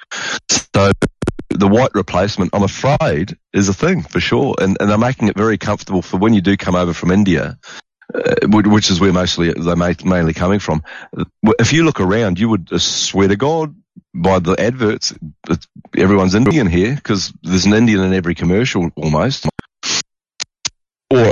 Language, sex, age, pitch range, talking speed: English, male, 40-59, 85-100 Hz, 170 wpm